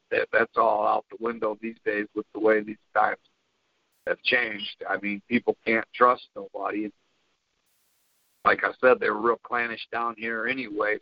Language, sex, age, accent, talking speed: English, male, 50-69, American, 165 wpm